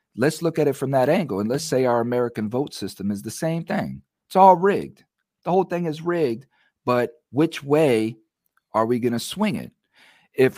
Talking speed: 205 wpm